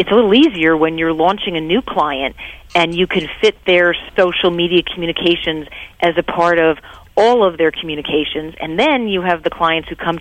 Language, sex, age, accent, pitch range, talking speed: English, female, 40-59, American, 165-195 Hz, 200 wpm